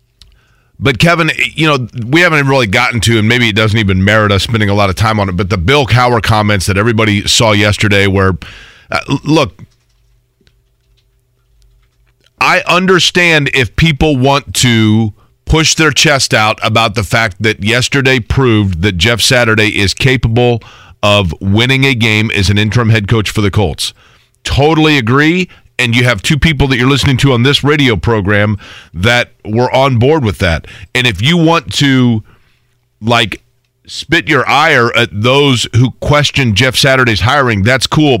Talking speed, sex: 170 wpm, male